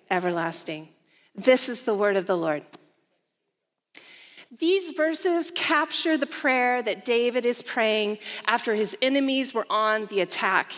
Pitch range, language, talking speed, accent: 195-270 Hz, English, 135 wpm, American